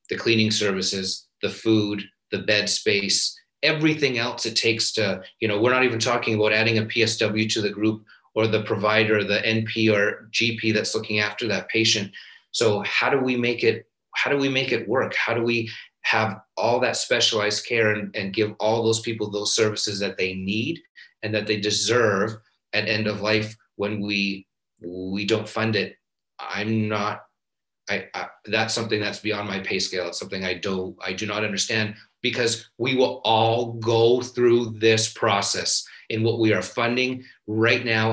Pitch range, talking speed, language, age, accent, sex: 105-115 Hz, 180 wpm, English, 30-49, American, male